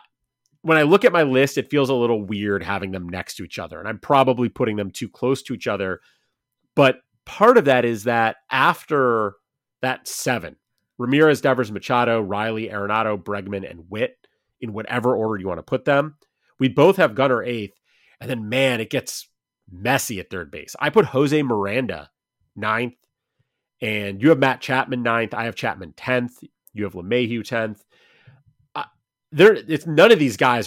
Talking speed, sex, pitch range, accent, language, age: 180 wpm, male, 105-135 Hz, American, English, 30-49